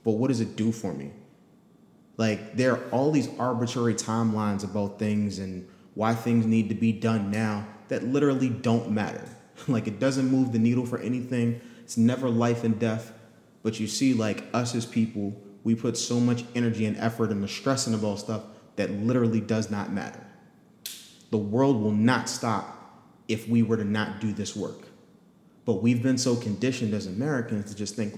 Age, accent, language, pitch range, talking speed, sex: 30-49, American, English, 105-130 Hz, 190 wpm, male